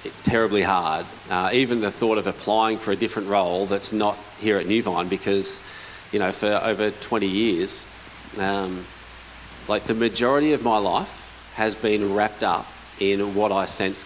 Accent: Australian